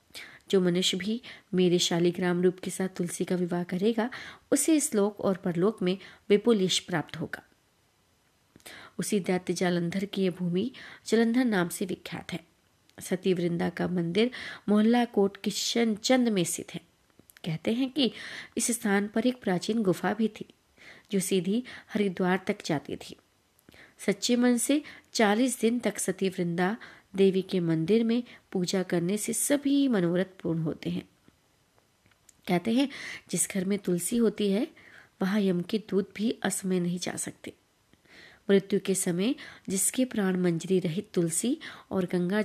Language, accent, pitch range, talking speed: Hindi, native, 180-220 Hz, 130 wpm